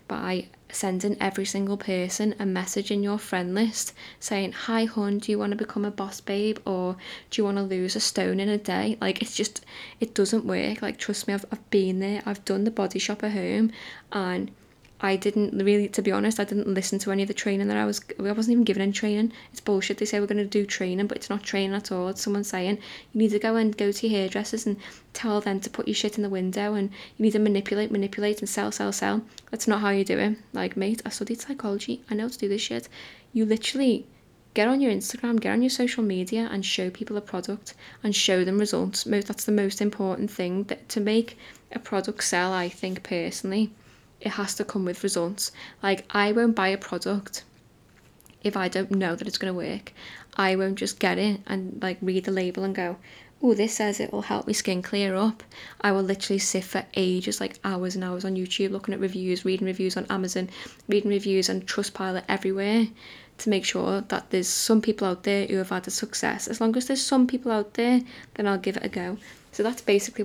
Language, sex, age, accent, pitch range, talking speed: English, female, 10-29, British, 190-215 Hz, 235 wpm